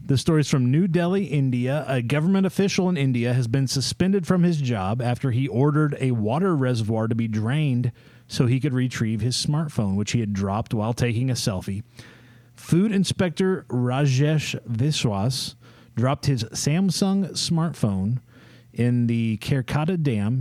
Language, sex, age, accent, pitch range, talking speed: English, male, 30-49, American, 120-150 Hz, 155 wpm